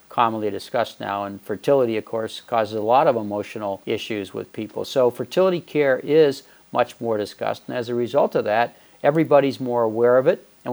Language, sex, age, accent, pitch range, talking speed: English, male, 50-69, American, 110-130 Hz, 190 wpm